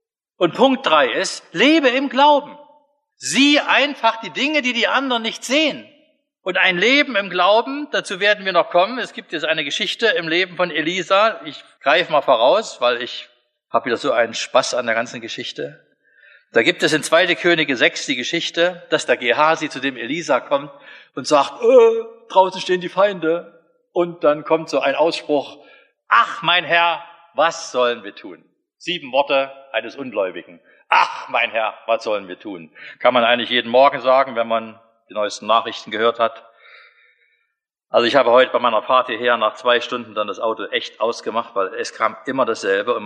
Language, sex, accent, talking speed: German, male, German, 185 wpm